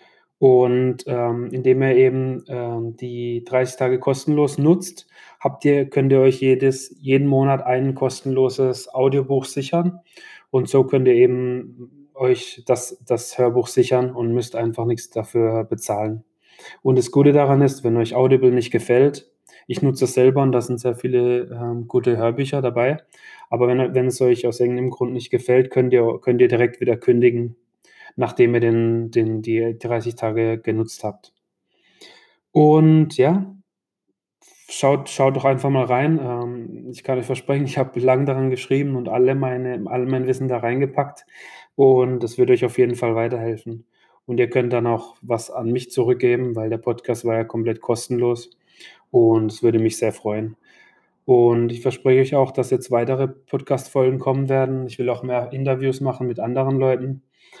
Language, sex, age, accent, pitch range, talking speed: German, male, 20-39, German, 120-135 Hz, 165 wpm